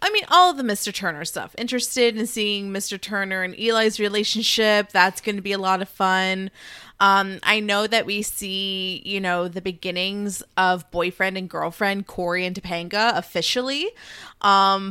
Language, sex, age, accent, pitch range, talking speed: English, female, 20-39, American, 185-225 Hz, 175 wpm